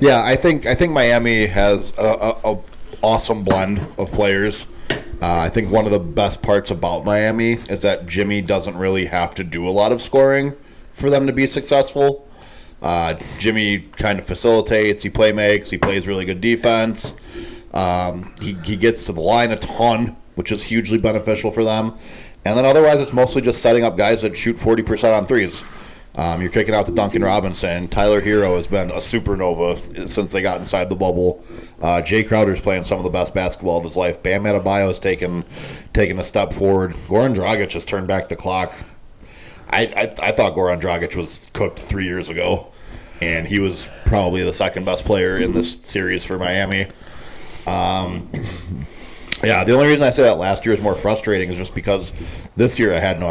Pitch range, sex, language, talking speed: 90-115 Hz, male, English, 190 wpm